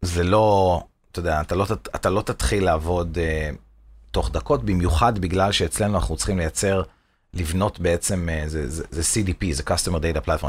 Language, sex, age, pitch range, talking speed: Hebrew, male, 30-49, 85-110 Hz, 175 wpm